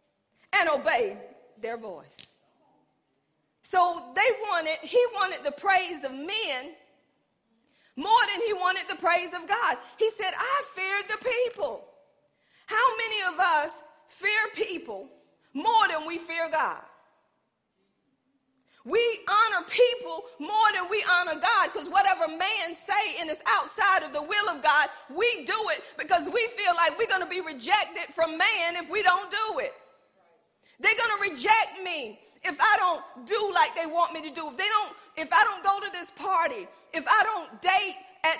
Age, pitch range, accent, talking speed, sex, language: 40-59, 330-430 Hz, American, 165 wpm, female, English